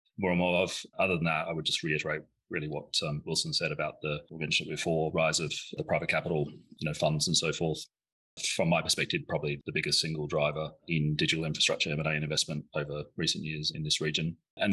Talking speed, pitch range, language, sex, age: 215 wpm, 75-80 Hz, English, male, 30-49